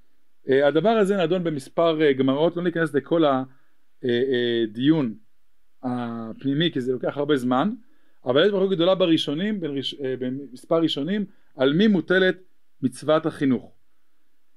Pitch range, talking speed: 140-205 Hz, 120 wpm